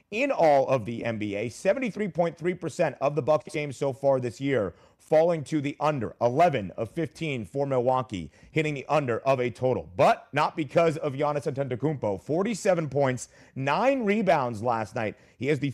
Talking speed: 170 wpm